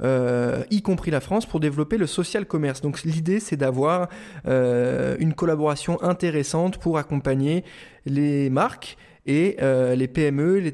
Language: French